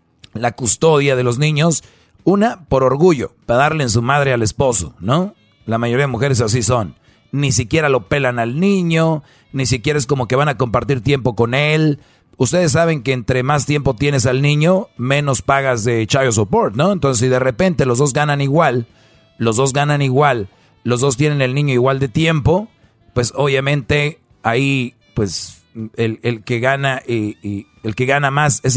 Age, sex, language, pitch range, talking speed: 40-59, male, Spanish, 120-150 Hz, 175 wpm